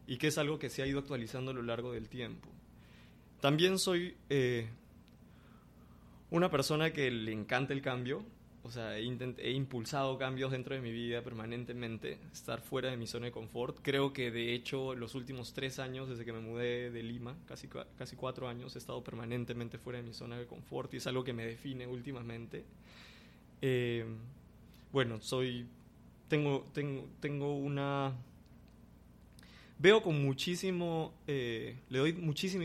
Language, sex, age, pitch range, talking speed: Spanish, male, 20-39, 115-135 Hz, 165 wpm